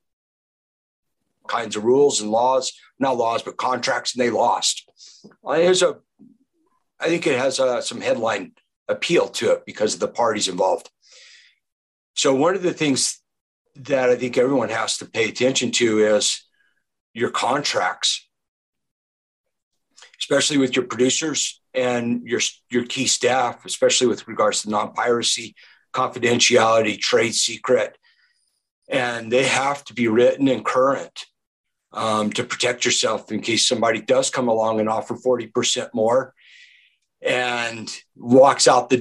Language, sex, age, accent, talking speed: English, male, 60-79, American, 135 wpm